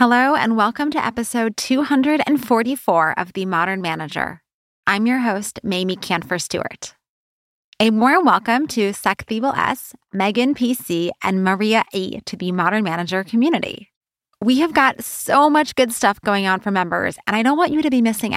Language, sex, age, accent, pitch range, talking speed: English, female, 20-39, American, 185-245 Hz, 165 wpm